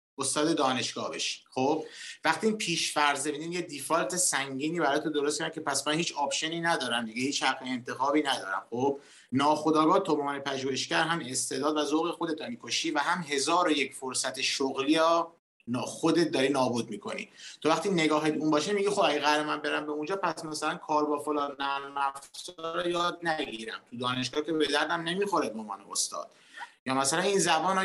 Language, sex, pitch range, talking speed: Persian, male, 135-165 Hz, 170 wpm